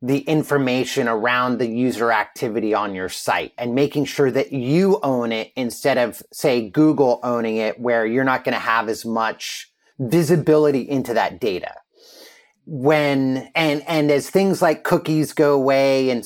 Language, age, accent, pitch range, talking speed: English, 30-49, American, 120-150 Hz, 160 wpm